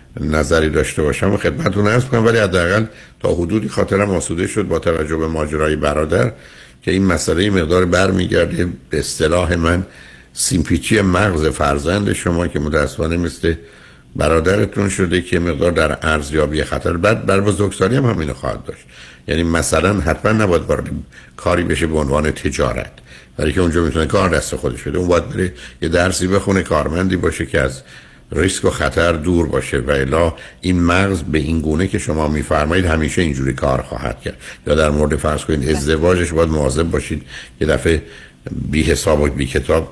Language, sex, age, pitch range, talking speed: Persian, male, 60-79, 70-90 Hz, 165 wpm